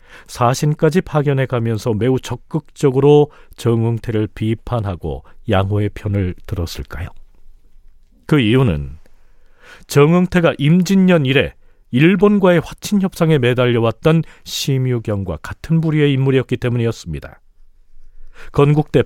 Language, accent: Korean, native